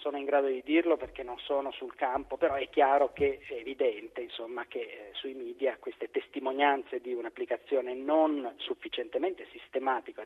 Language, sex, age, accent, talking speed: Italian, male, 40-59, native, 165 wpm